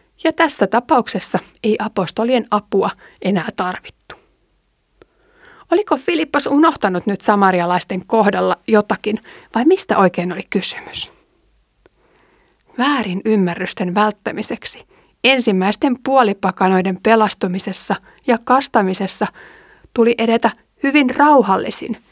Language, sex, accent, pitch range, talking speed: Finnish, female, native, 200-265 Hz, 85 wpm